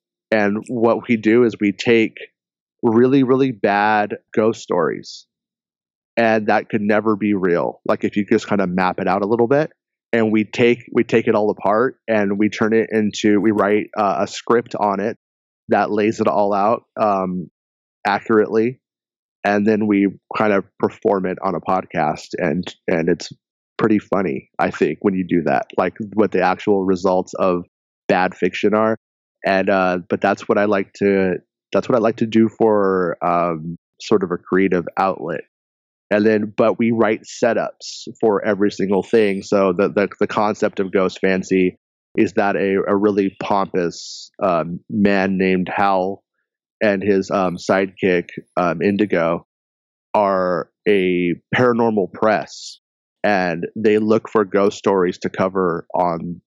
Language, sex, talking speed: English, male, 165 wpm